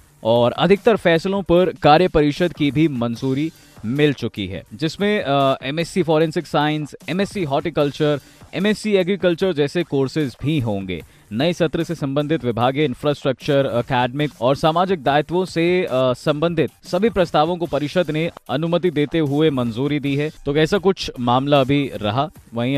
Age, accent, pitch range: 20-39, native, 130-175 Hz